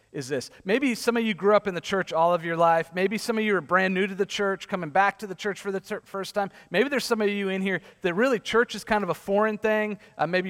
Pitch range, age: 185-220 Hz, 40-59